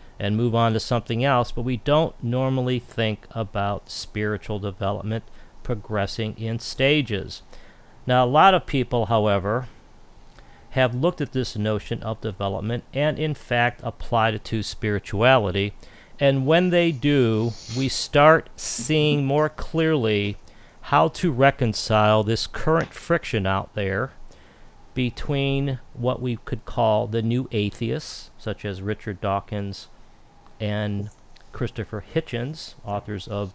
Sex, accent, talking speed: male, American, 125 wpm